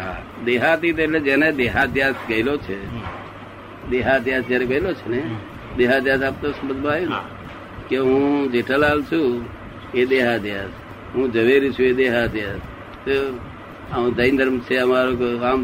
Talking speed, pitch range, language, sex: 110 wpm, 120-135 Hz, Gujarati, male